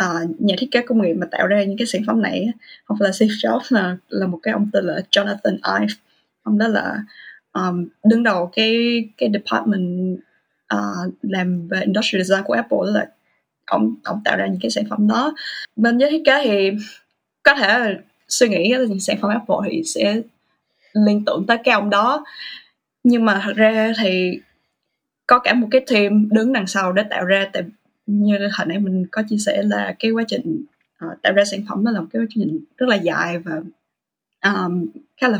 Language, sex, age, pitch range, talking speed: Vietnamese, female, 20-39, 190-240 Hz, 205 wpm